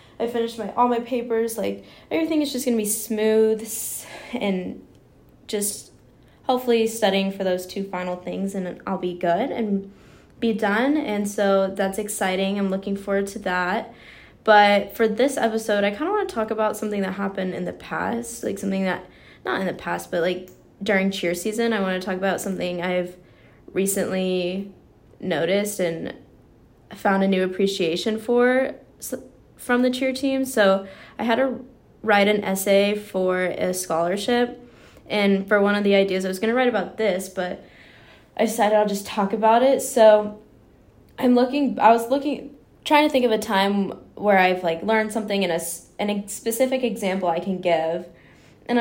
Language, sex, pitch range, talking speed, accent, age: English, female, 185-225 Hz, 175 wpm, American, 10-29